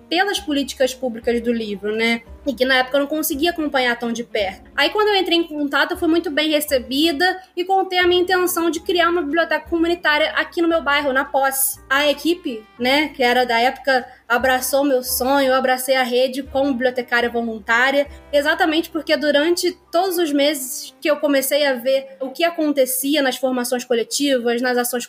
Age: 20-39